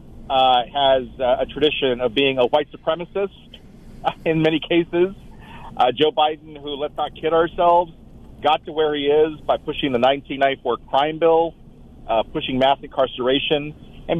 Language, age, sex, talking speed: English, 40-59, male, 160 wpm